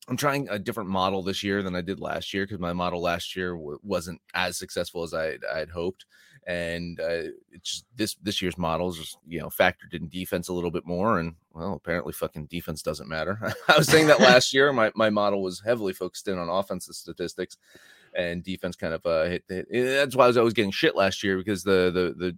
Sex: male